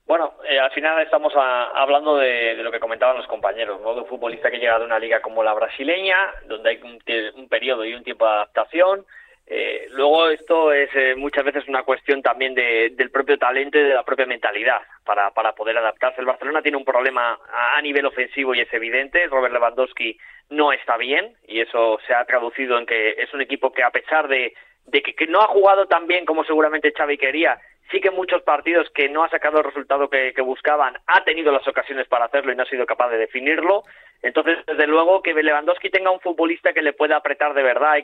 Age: 20-39